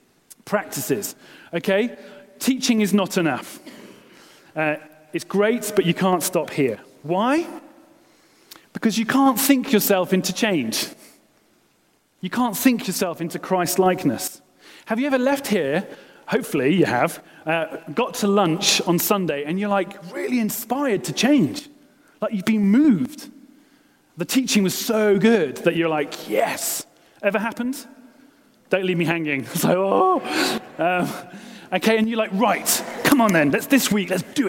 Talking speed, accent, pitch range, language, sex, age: 150 wpm, British, 185-260 Hz, English, male, 30-49